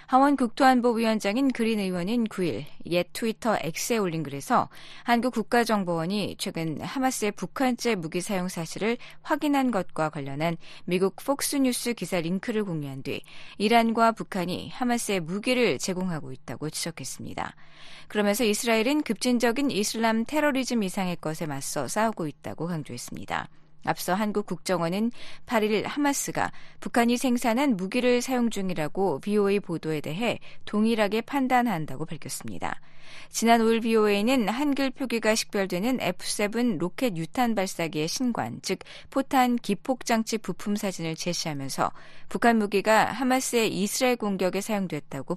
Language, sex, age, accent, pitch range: Korean, female, 20-39, native, 170-235 Hz